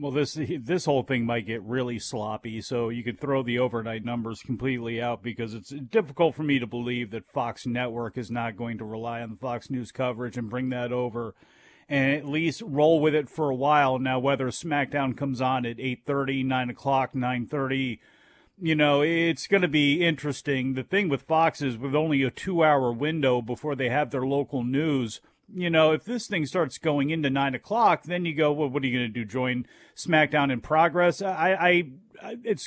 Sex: male